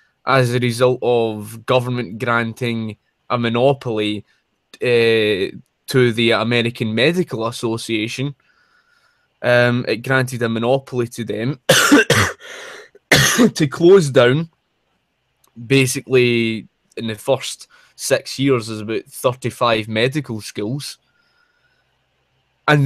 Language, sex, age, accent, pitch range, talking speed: English, male, 20-39, British, 115-135 Hz, 95 wpm